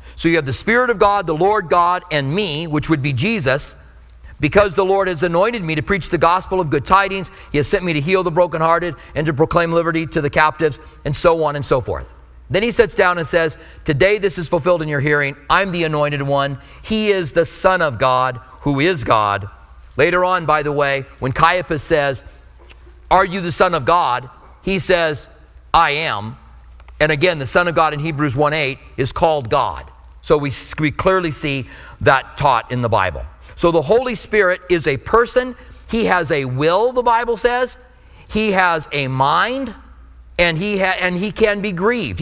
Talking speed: 200 wpm